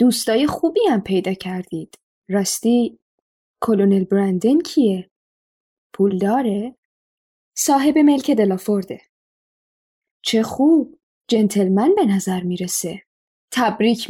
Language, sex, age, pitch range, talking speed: Persian, female, 10-29, 195-275 Hz, 90 wpm